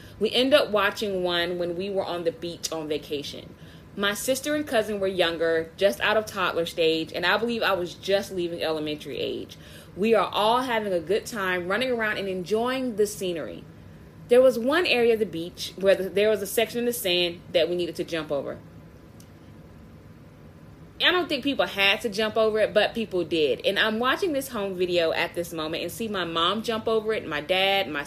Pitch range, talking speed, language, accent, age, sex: 170-230 Hz, 215 wpm, English, American, 20-39, female